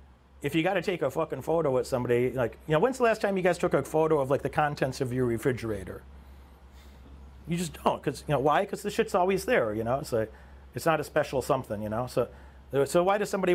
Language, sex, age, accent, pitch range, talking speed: English, male, 40-59, American, 115-145 Hz, 250 wpm